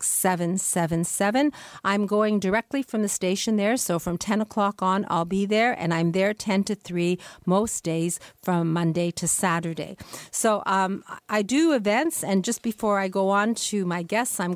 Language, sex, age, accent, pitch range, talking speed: English, female, 50-69, American, 180-220 Hz, 175 wpm